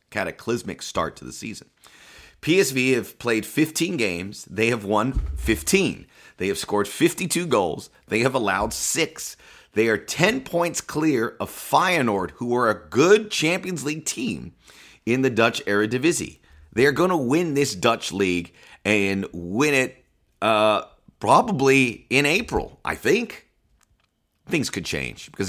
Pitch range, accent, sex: 100-150 Hz, American, male